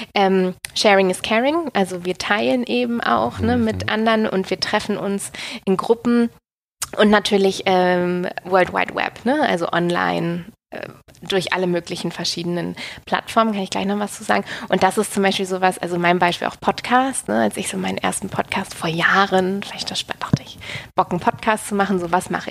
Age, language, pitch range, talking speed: 20-39, German, 185-225 Hz, 175 wpm